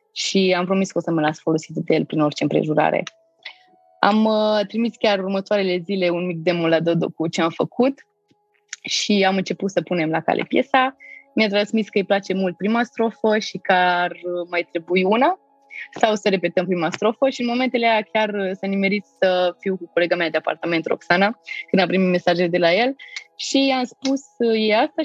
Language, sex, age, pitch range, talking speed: Romanian, female, 20-39, 175-260 Hz, 200 wpm